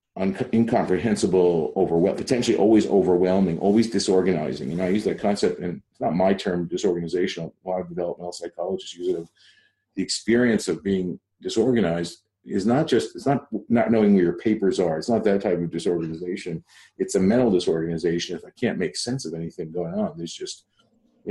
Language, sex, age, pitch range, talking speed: English, male, 40-59, 85-105 Hz, 190 wpm